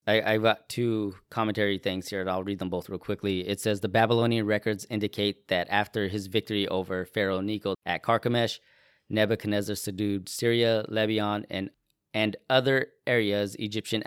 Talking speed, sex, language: 160 wpm, male, English